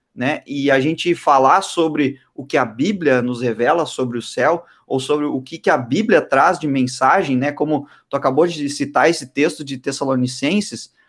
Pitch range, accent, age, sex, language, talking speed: 130-175 Hz, Brazilian, 20-39, male, Portuguese, 190 wpm